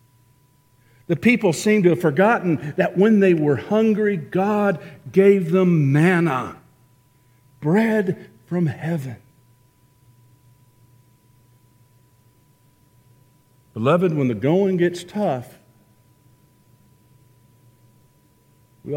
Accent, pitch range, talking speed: American, 115-140 Hz, 80 wpm